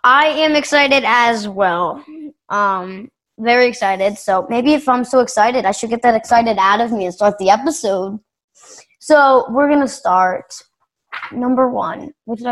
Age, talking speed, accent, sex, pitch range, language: 20-39, 170 wpm, American, female, 210-275 Hz, English